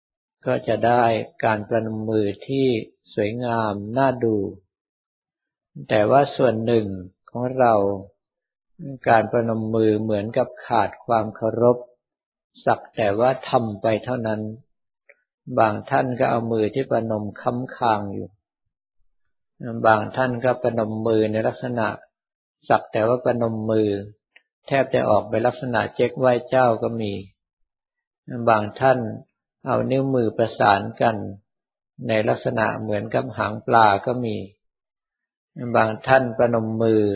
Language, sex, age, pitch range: Thai, male, 60-79, 105-125 Hz